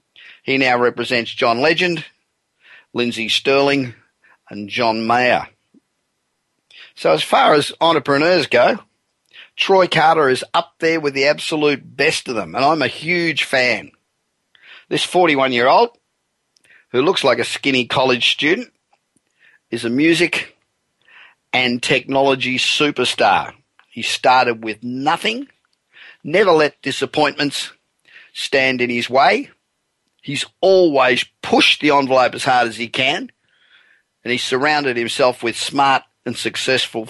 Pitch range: 120-140 Hz